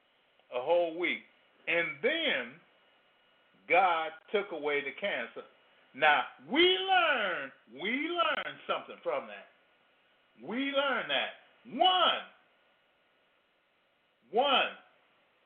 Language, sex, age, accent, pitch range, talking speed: English, male, 50-69, American, 205-295 Hz, 90 wpm